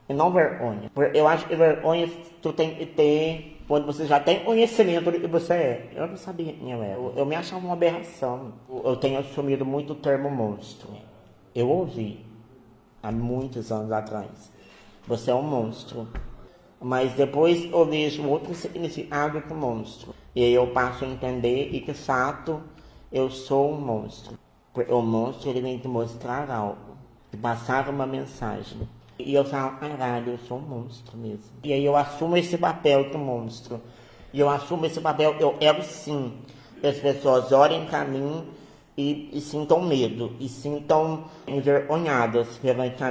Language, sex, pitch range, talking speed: Portuguese, male, 125-155 Hz, 170 wpm